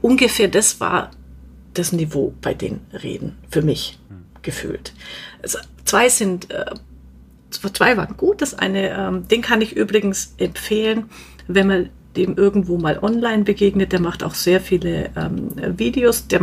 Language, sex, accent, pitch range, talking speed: German, female, German, 170-205 Hz, 140 wpm